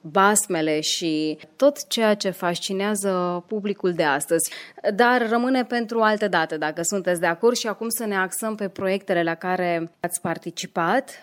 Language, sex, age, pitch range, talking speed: Romanian, female, 20-39, 170-210 Hz, 155 wpm